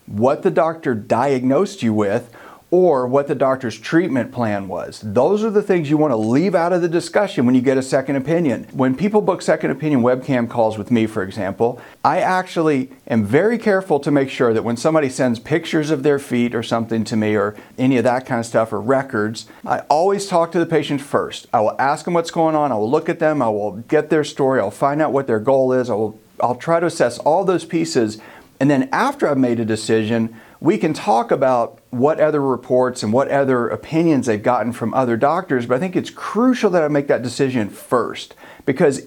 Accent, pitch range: American, 115-165 Hz